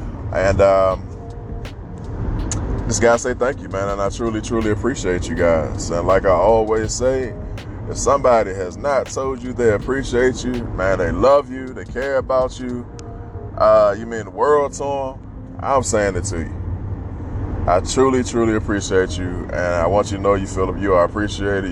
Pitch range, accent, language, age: 95-115 Hz, American, English, 20-39